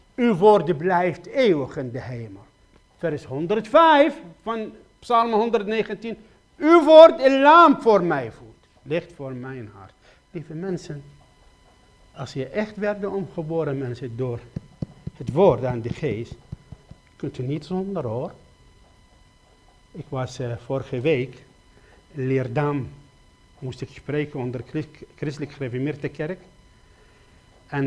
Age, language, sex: 60-79, Dutch, male